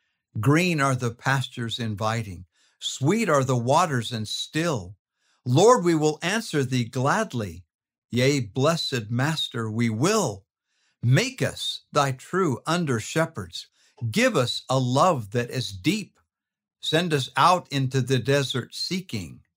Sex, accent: male, American